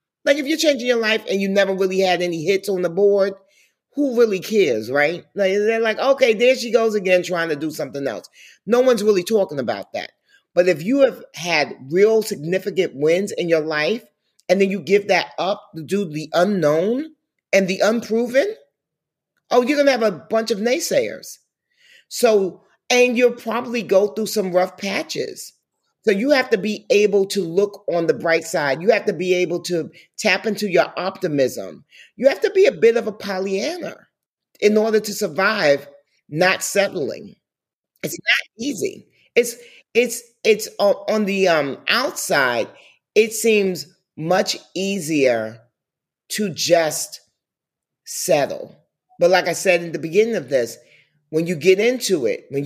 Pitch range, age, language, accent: 175-235 Hz, 40-59, English, American